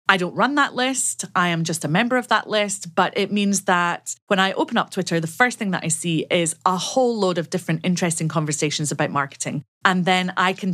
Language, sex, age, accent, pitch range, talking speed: English, female, 30-49, British, 155-205 Hz, 235 wpm